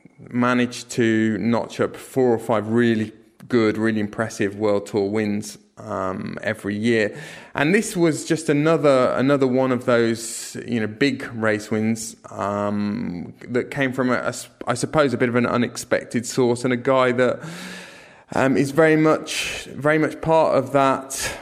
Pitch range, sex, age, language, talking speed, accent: 105-125 Hz, male, 20-39, English, 165 wpm, British